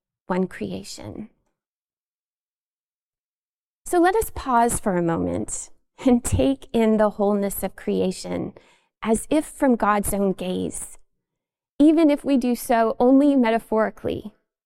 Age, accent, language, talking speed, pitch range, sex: 20-39, American, English, 120 wpm, 190-240 Hz, female